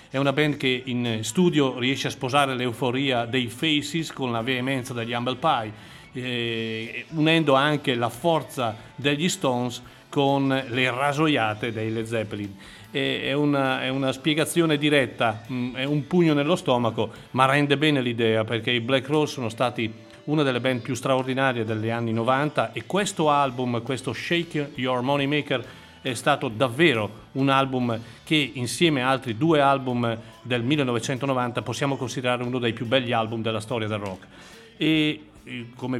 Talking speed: 155 wpm